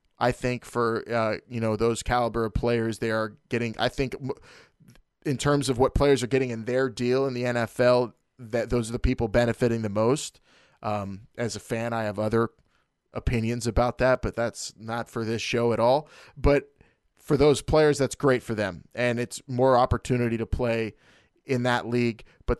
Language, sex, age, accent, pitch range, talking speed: English, male, 20-39, American, 115-135 Hz, 190 wpm